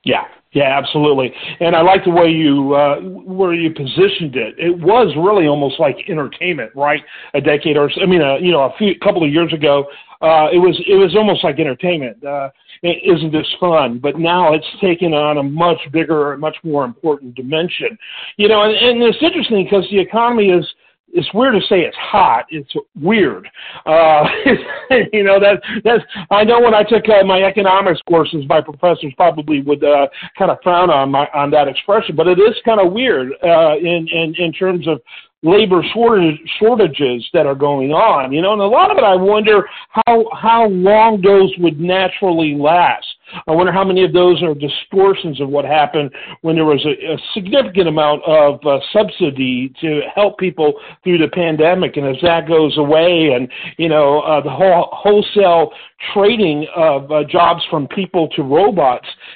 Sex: male